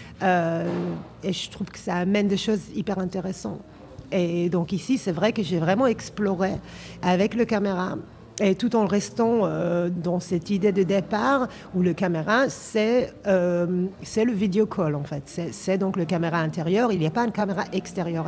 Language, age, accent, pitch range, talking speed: French, 40-59, French, 175-205 Hz, 185 wpm